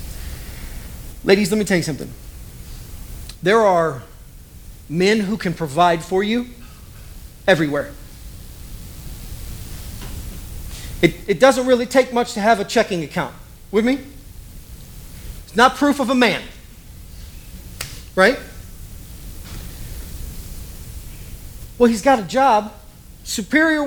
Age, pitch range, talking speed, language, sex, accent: 40-59, 150-245 Hz, 105 wpm, English, male, American